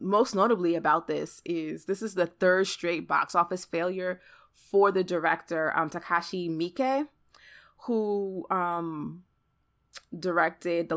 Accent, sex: American, female